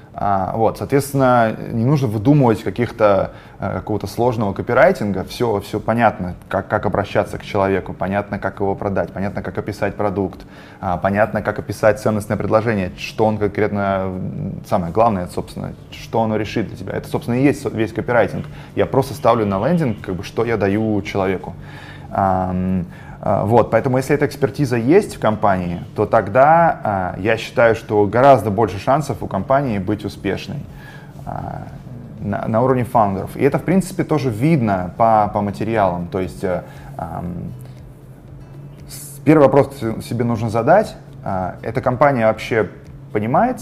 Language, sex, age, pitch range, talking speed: Russian, male, 20-39, 100-135 Hz, 145 wpm